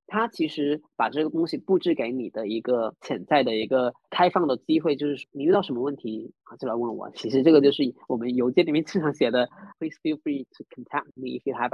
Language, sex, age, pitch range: Chinese, male, 20-39, 130-210 Hz